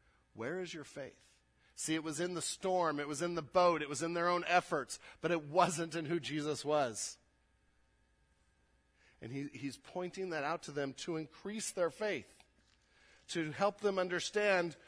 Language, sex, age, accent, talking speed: English, male, 40-59, American, 180 wpm